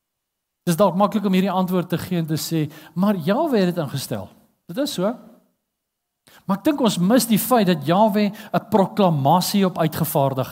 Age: 50-69